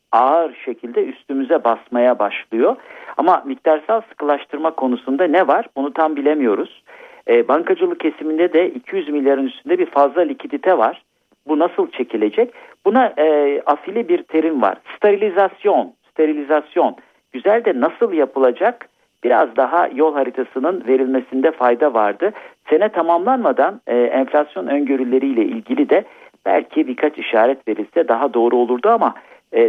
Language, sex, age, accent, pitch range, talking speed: Turkish, male, 50-69, native, 120-190 Hz, 125 wpm